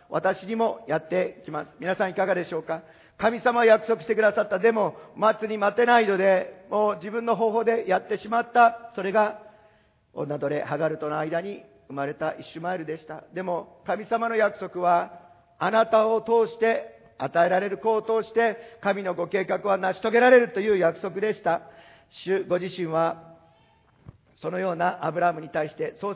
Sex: male